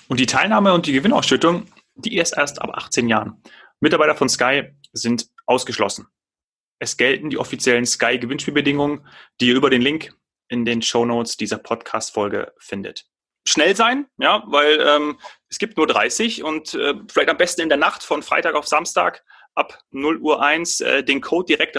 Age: 30-49